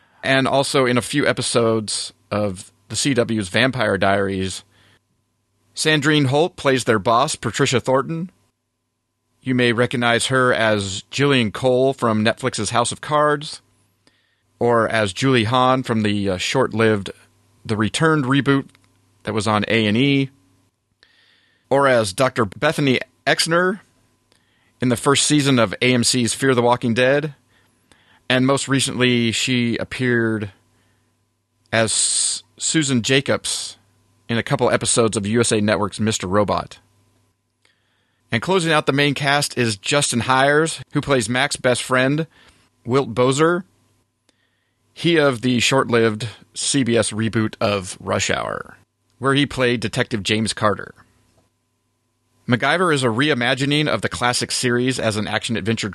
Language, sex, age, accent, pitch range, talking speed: English, male, 30-49, American, 110-135 Hz, 125 wpm